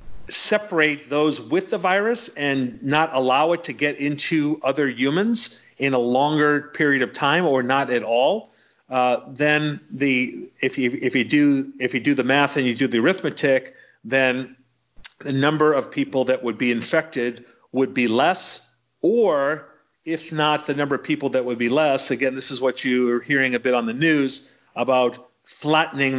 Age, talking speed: 40-59, 170 wpm